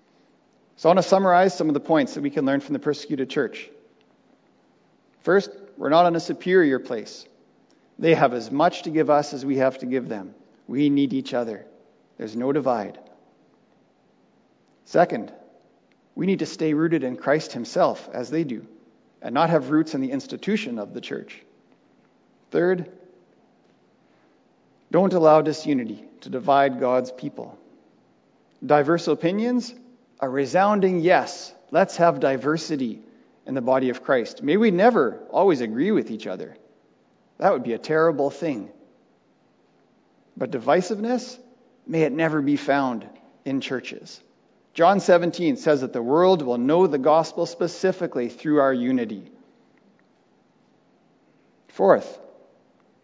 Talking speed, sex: 140 wpm, male